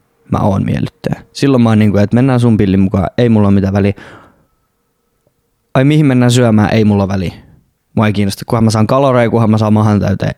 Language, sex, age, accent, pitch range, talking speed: Finnish, male, 20-39, native, 105-125 Hz, 190 wpm